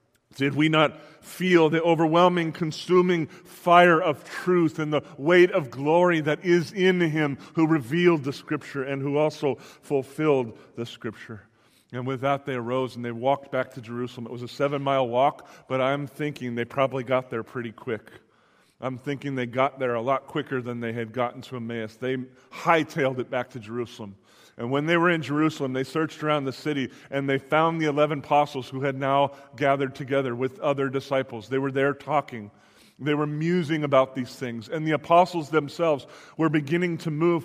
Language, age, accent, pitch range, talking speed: English, 40-59, American, 135-165 Hz, 185 wpm